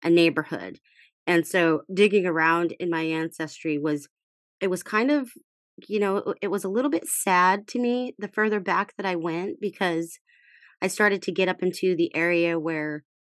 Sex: female